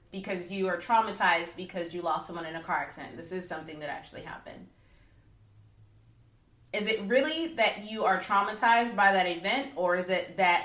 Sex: female